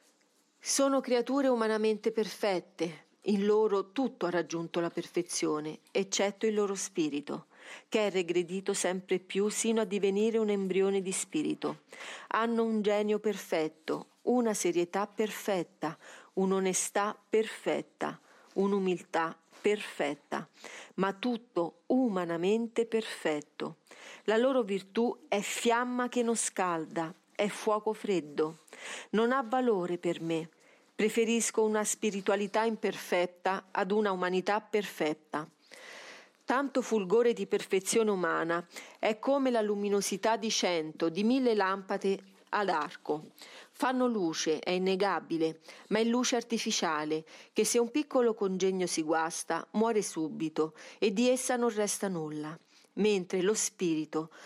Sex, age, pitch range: female, 40-59, 180-225 Hz